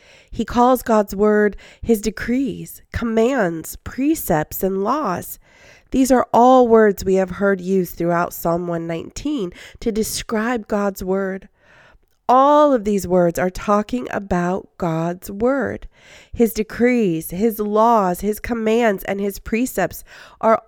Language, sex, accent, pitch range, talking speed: English, female, American, 180-235 Hz, 130 wpm